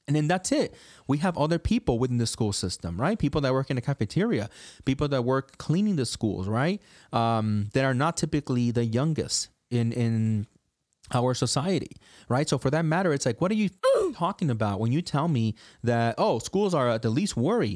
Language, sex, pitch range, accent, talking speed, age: English, male, 110-155 Hz, American, 205 wpm, 30-49